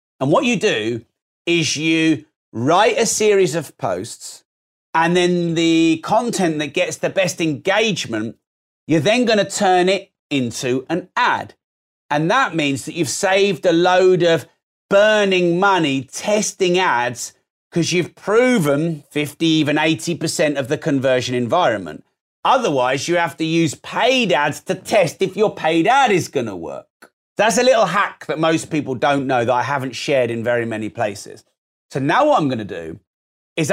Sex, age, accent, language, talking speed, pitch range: male, 40-59, British, English, 170 wpm, 140-190 Hz